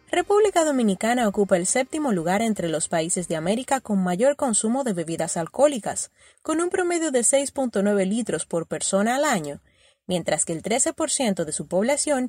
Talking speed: 165 wpm